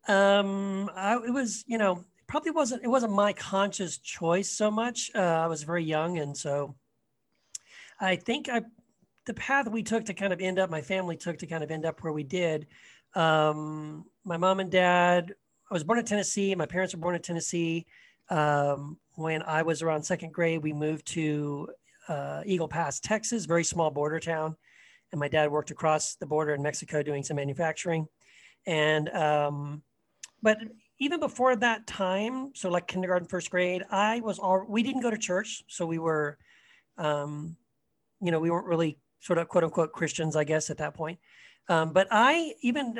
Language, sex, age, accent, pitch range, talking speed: English, male, 40-59, American, 155-200 Hz, 185 wpm